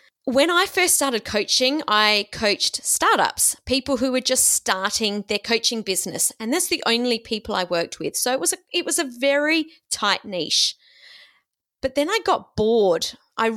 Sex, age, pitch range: female, 30-49, 210-290 Hz